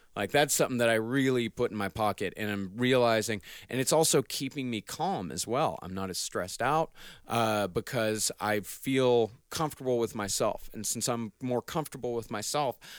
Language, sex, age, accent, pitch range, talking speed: English, male, 30-49, American, 100-125 Hz, 185 wpm